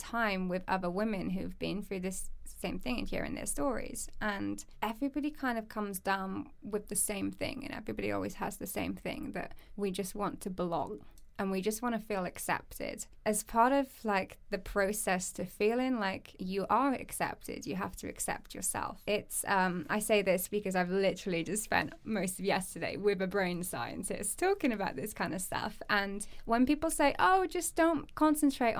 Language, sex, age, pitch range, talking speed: English, female, 20-39, 195-250 Hz, 190 wpm